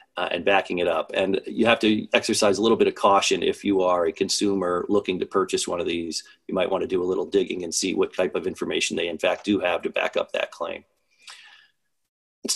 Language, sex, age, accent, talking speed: English, male, 40-59, American, 240 wpm